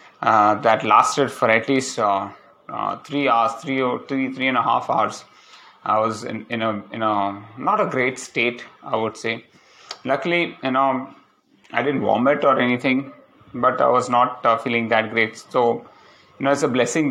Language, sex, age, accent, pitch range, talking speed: English, male, 30-49, Indian, 110-130 Hz, 190 wpm